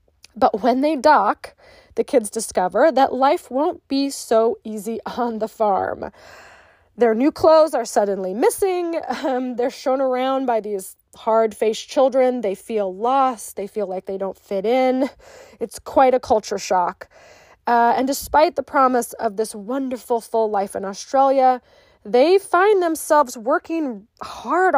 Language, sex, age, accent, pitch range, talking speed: English, female, 20-39, American, 220-280 Hz, 150 wpm